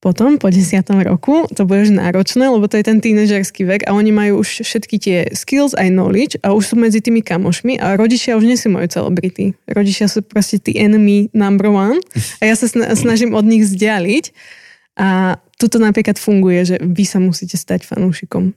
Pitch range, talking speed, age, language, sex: 185-220 Hz, 195 wpm, 20-39, Slovak, female